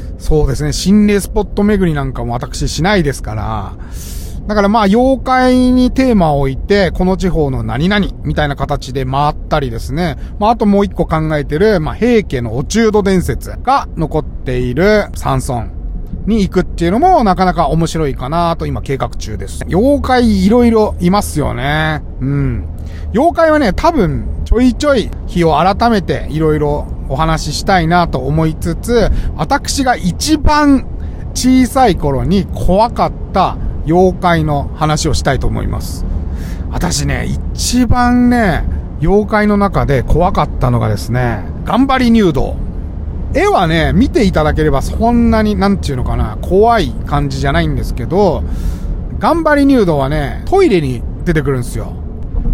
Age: 30-49